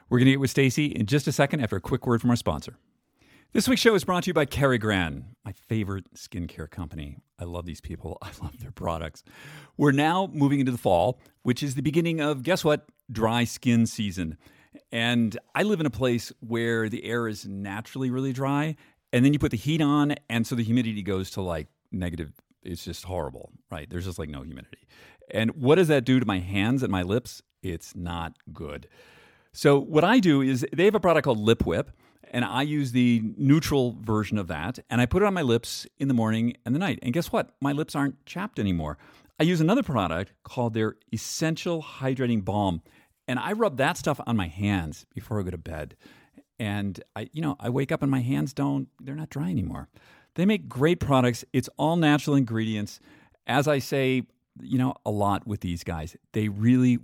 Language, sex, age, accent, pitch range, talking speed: English, male, 50-69, American, 100-140 Hz, 215 wpm